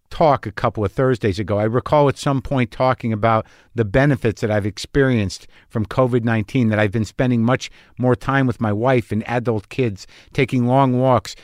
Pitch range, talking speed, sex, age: 110-140 Hz, 190 wpm, male, 50-69